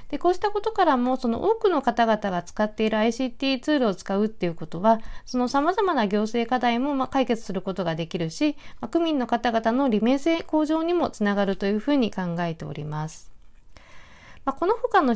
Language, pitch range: Japanese, 195-290 Hz